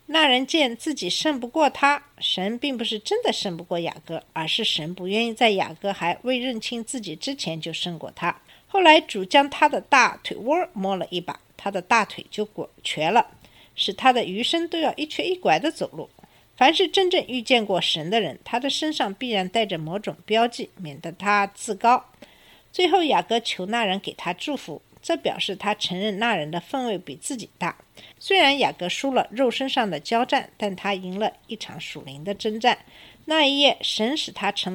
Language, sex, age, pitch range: Chinese, female, 50-69, 190-275 Hz